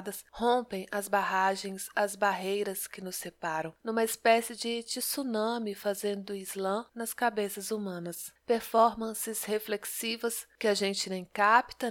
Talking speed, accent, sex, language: 120 wpm, Brazilian, female, Portuguese